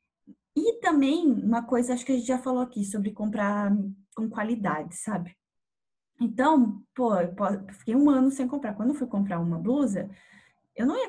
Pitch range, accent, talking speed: 200-265 Hz, Brazilian, 180 wpm